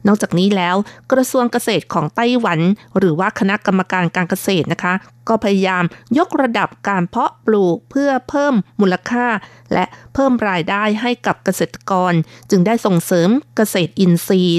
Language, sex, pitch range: Thai, female, 180-225 Hz